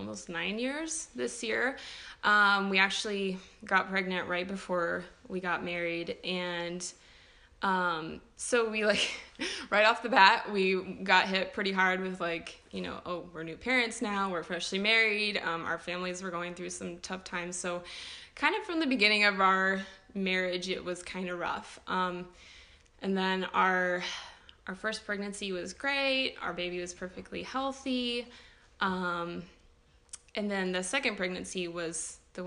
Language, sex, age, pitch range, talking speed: English, female, 20-39, 175-210 Hz, 160 wpm